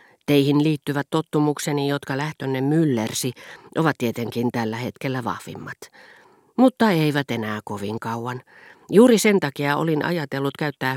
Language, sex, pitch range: Finnish, female, 120-150 Hz